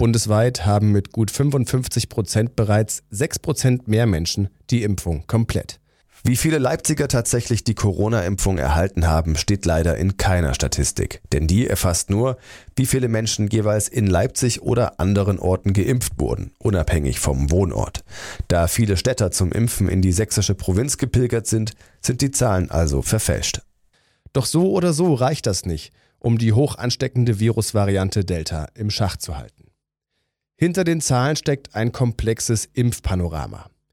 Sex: male